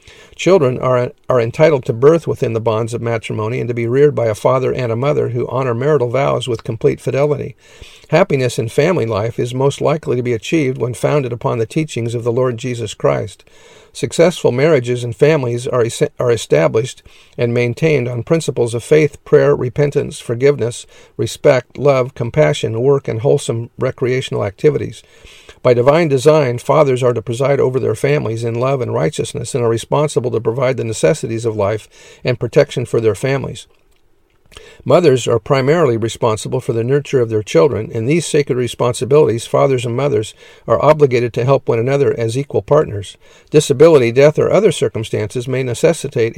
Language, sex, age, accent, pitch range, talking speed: English, male, 50-69, American, 115-145 Hz, 170 wpm